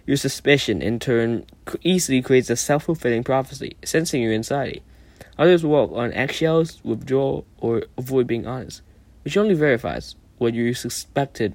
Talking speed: 140 wpm